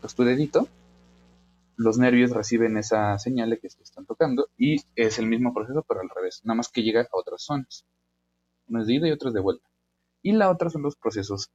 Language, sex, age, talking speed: Spanish, male, 30-49, 225 wpm